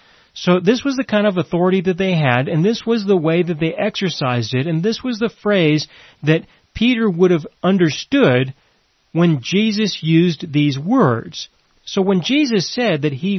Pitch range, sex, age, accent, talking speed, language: 150-205 Hz, male, 40-59, American, 180 wpm, English